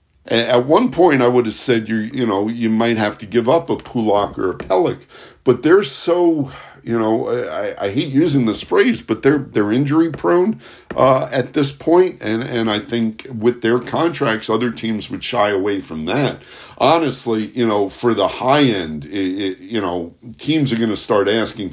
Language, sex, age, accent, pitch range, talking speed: English, male, 60-79, American, 105-135 Hz, 200 wpm